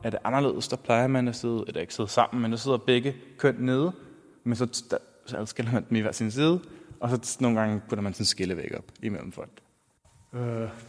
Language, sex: Danish, male